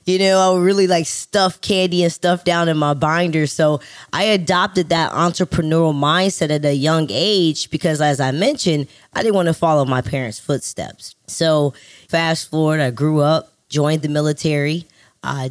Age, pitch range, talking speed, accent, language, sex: 10-29, 140-175 Hz, 180 wpm, American, English, female